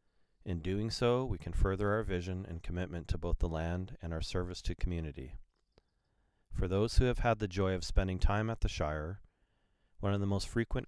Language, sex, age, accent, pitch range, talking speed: English, male, 40-59, American, 80-95 Hz, 205 wpm